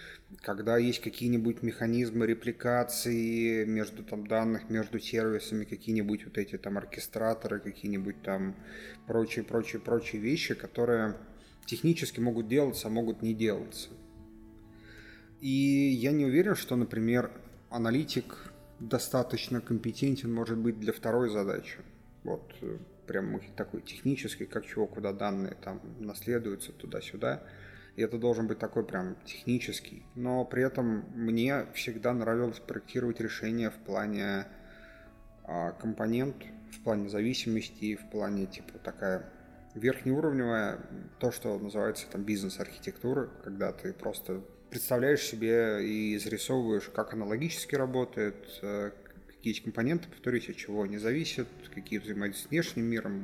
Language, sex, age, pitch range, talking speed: Russian, male, 30-49, 105-120 Hz, 120 wpm